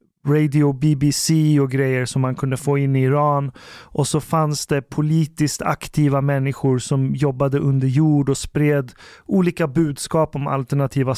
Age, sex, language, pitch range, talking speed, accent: 30-49, male, Swedish, 140-170 Hz, 150 wpm, native